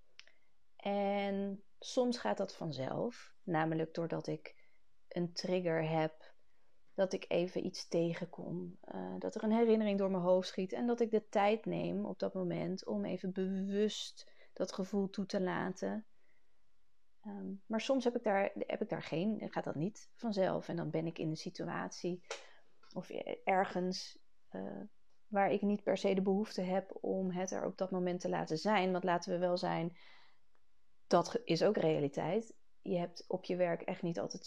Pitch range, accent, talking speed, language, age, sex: 175-230 Hz, Dutch, 170 wpm, Dutch, 30-49, female